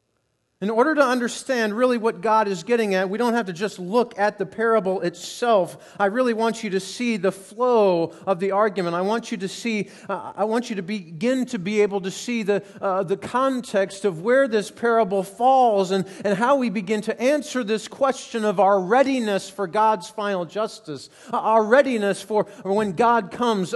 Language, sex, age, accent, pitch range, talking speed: English, male, 40-59, American, 200-245 Hz, 195 wpm